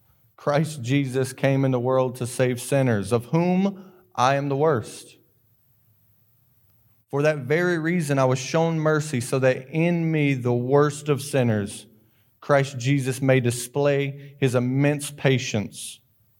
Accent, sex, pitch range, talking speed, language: American, male, 115-145 Hz, 140 wpm, English